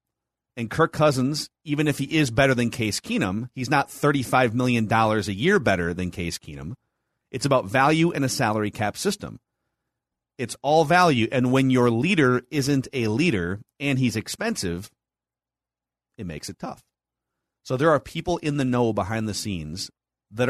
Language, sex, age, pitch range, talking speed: English, male, 30-49, 120-155 Hz, 170 wpm